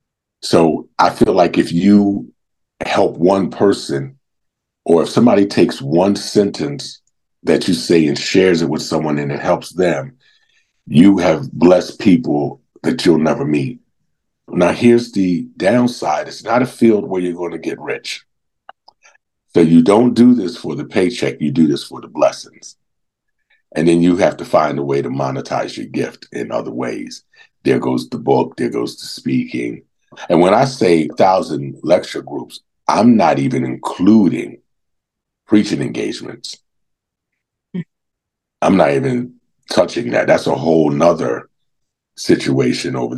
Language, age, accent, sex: English, 50-69, American, male